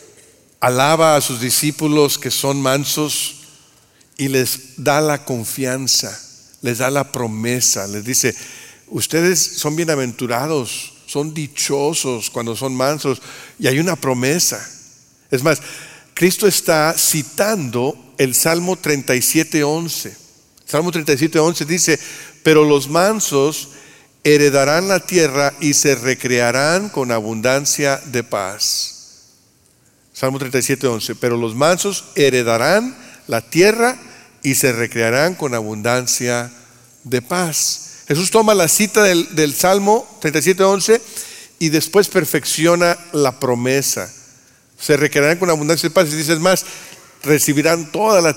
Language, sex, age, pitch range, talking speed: Spanish, male, 50-69, 130-160 Hz, 120 wpm